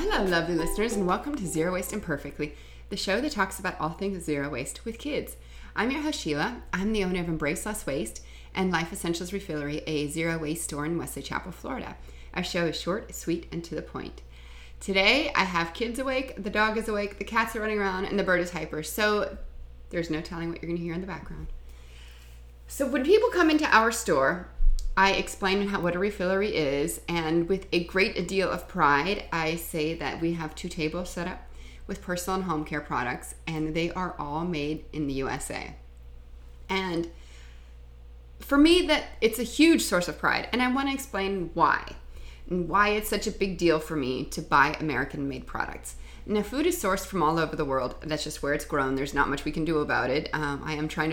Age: 30-49